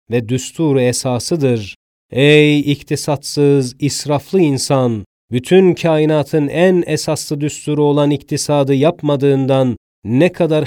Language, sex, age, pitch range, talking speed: Turkish, male, 40-59, 130-150 Hz, 95 wpm